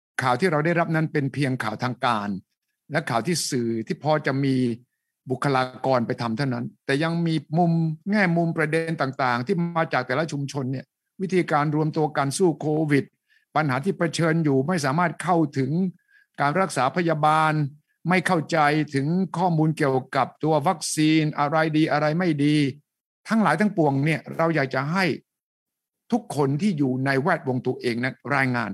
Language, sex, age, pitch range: English, male, 60-79, 130-170 Hz